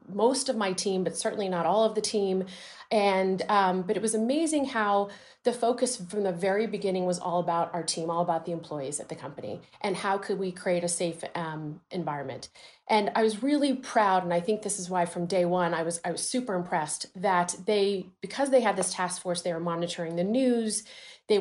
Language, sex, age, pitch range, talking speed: English, female, 30-49, 180-230 Hz, 220 wpm